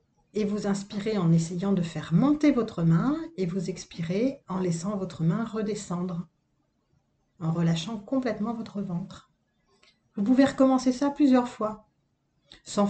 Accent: French